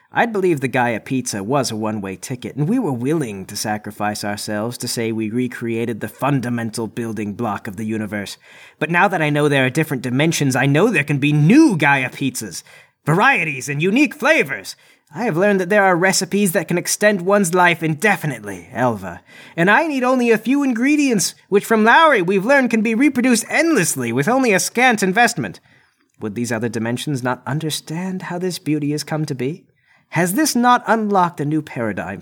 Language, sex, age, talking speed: English, male, 30-49, 190 wpm